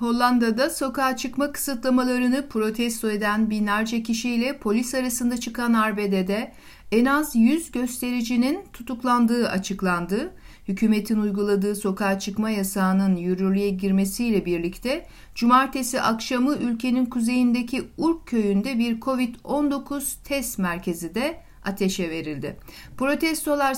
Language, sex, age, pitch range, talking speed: Turkish, female, 60-79, 200-260 Hz, 100 wpm